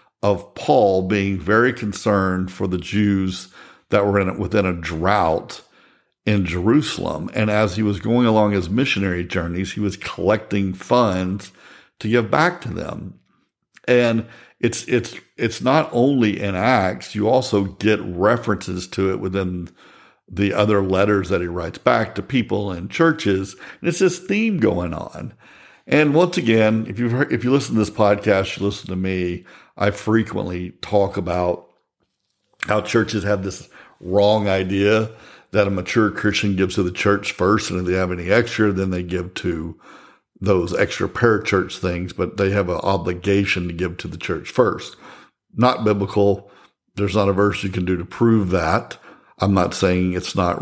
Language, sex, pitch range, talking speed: English, male, 95-110 Hz, 170 wpm